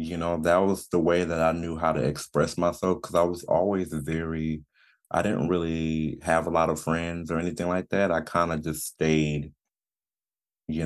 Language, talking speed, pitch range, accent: English, 200 wpm, 80-100 Hz, American